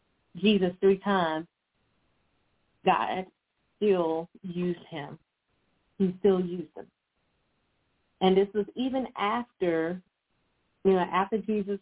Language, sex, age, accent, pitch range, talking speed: English, female, 30-49, American, 175-200 Hz, 100 wpm